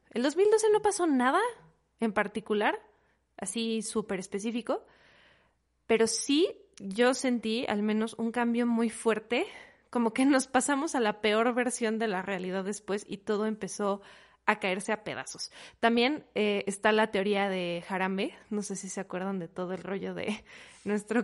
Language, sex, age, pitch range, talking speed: Spanish, female, 20-39, 210-265 Hz, 160 wpm